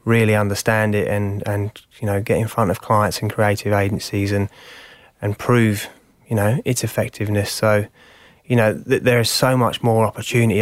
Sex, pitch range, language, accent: male, 105-115 Hz, English, British